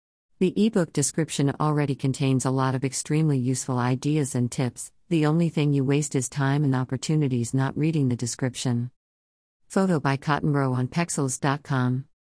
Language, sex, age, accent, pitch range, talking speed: English, female, 50-69, American, 130-155 Hz, 150 wpm